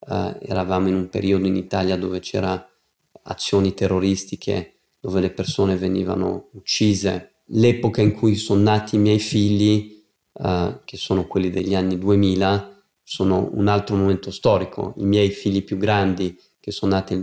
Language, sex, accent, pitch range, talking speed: Italian, male, native, 95-100 Hz, 155 wpm